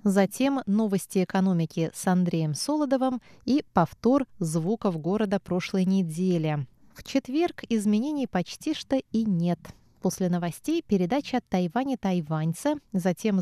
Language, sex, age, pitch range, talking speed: Russian, female, 20-39, 175-240 Hz, 110 wpm